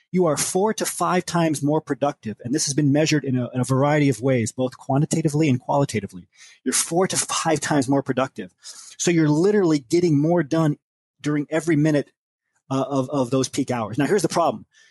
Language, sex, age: English, male, 30-49